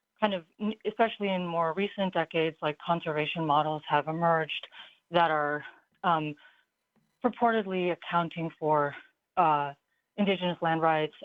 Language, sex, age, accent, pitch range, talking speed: English, female, 30-49, American, 150-175 Hz, 115 wpm